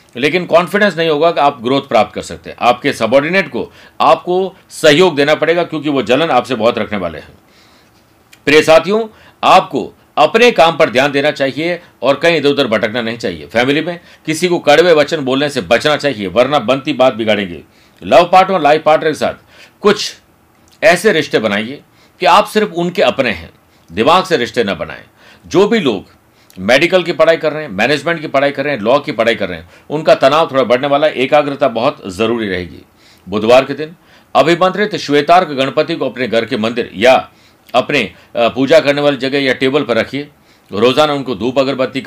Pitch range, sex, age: 115-155 Hz, male, 50-69